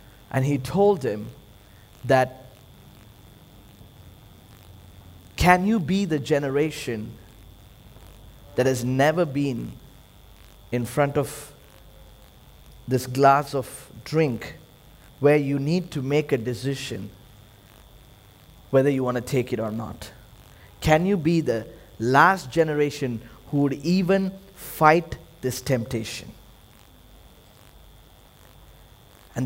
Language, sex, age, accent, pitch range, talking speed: English, male, 20-39, Indian, 115-160 Hz, 100 wpm